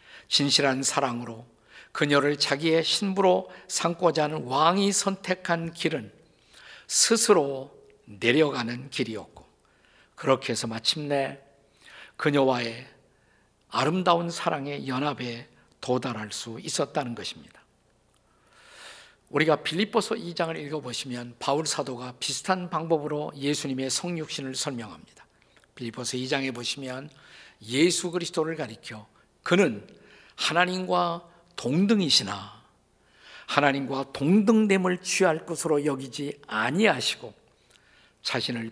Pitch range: 130-175 Hz